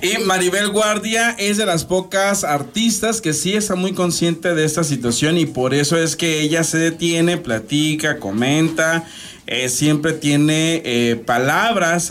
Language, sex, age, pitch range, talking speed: Spanish, male, 40-59, 140-185 Hz, 155 wpm